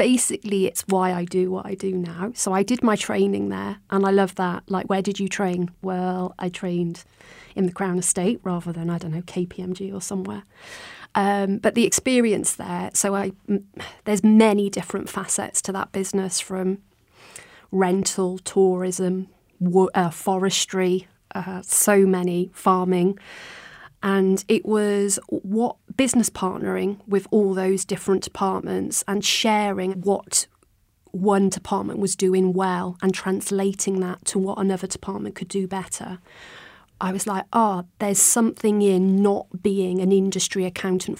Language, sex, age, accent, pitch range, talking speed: English, female, 30-49, British, 185-200 Hz, 150 wpm